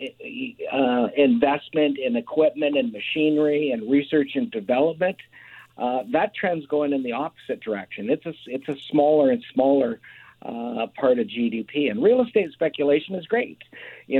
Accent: American